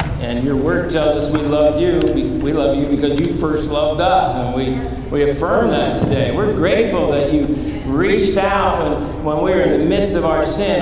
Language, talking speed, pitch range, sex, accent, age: English, 215 wpm, 135-180 Hz, male, American, 50-69